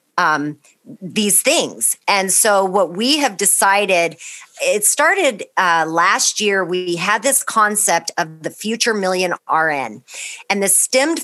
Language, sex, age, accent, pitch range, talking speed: English, female, 40-59, American, 175-220 Hz, 140 wpm